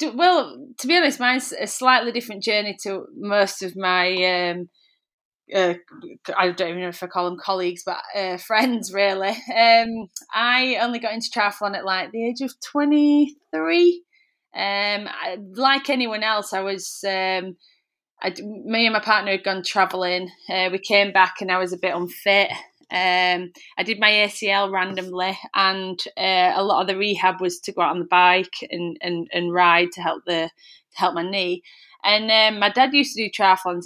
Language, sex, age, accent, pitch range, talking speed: English, female, 20-39, British, 180-220 Hz, 185 wpm